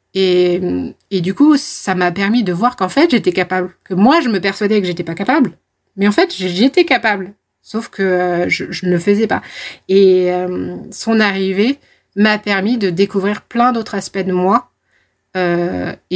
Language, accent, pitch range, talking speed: French, French, 185-235 Hz, 180 wpm